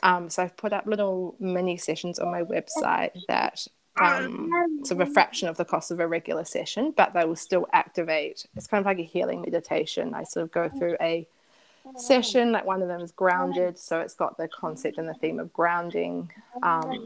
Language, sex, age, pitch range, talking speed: English, female, 20-39, 175-235 Hz, 210 wpm